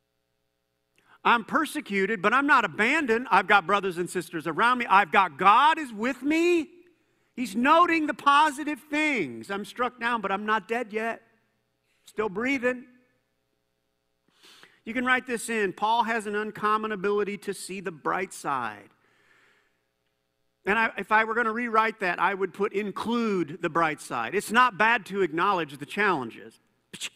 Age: 50-69